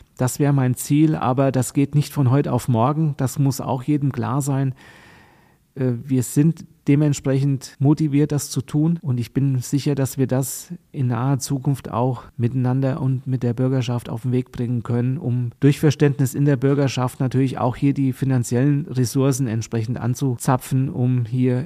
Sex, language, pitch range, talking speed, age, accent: male, German, 125-140 Hz, 170 wpm, 40-59, German